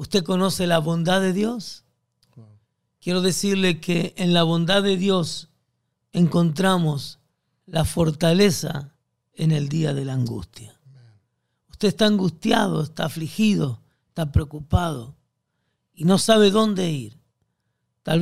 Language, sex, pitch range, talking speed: Spanish, male, 140-190 Hz, 120 wpm